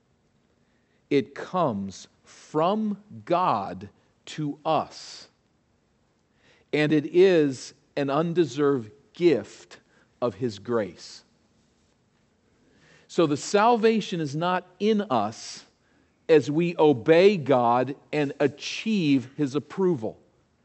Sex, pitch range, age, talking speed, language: male, 120-160 Hz, 50-69, 85 wpm, English